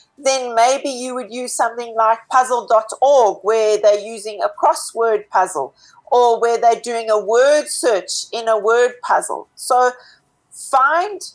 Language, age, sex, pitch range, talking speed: English, 40-59, female, 230-305 Hz, 145 wpm